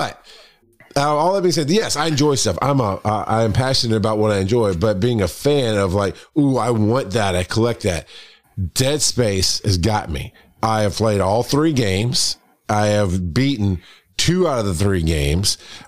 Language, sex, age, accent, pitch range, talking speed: English, male, 40-59, American, 95-125 Hz, 200 wpm